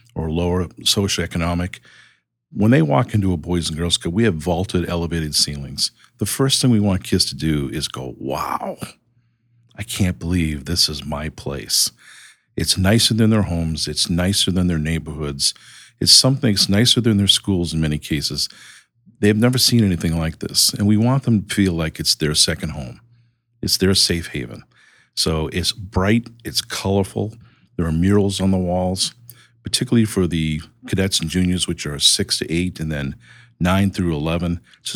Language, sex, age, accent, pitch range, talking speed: English, male, 50-69, American, 80-105 Hz, 180 wpm